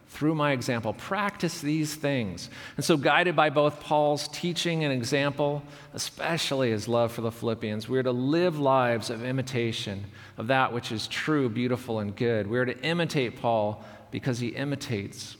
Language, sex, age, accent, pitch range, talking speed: English, male, 40-59, American, 115-145 Hz, 170 wpm